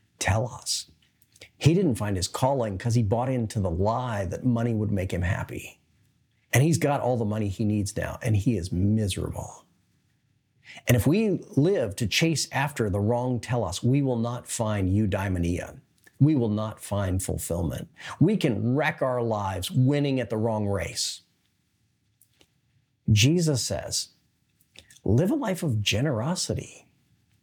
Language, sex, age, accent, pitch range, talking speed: English, male, 50-69, American, 105-155 Hz, 155 wpm